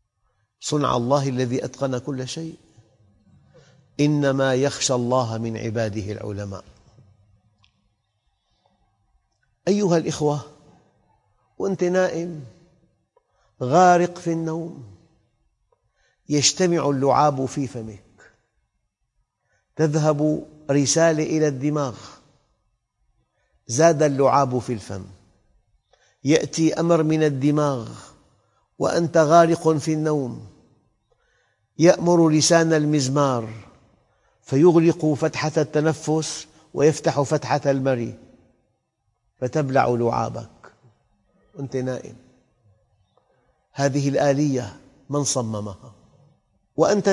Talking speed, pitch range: 75 wpm, 115-160 Hz